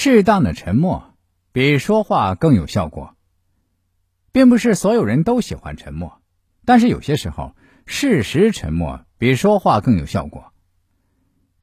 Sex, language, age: male, Chinese, 50-69